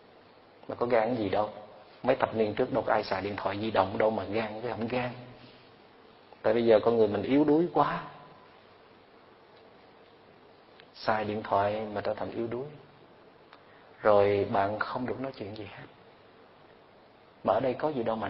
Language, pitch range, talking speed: Vietnamese, 105-130 Hz, 175 wpm